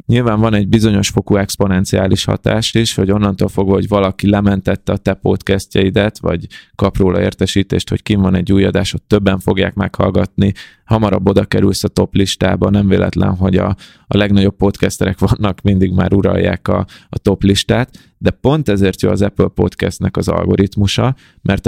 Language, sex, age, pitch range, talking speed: Hungarian, male, 20-39, 95-105 Hz, 170 wpm